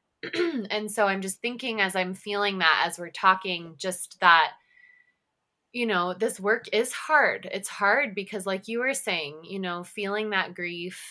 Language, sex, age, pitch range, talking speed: English, female, 20-39, 170-200 Hz, 175 wpm